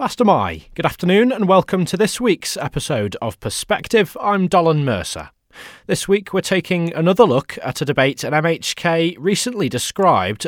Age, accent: 20-39, British